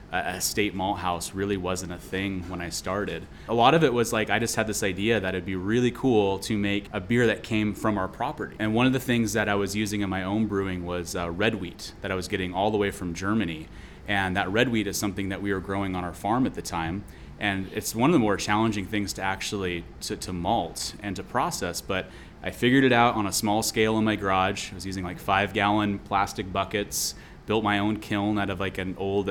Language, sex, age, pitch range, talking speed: English, male, 20-39, 95-110 Hz, 250 wpm